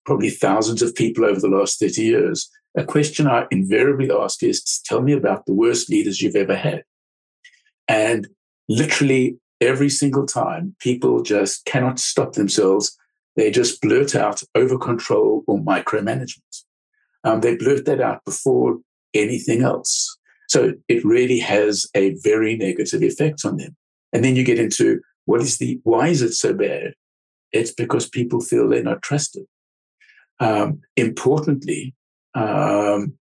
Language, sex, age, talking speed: English, male, 50-69, 150 wpm